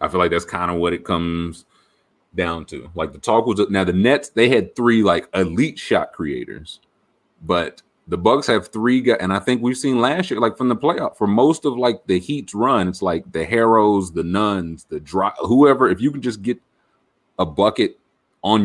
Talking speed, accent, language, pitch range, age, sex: 210 wpm, American, English, 95-125 Hz, 30-49, male